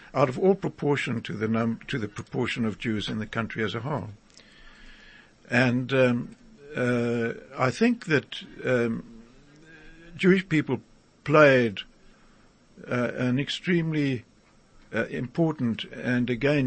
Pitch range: 115-145 Hz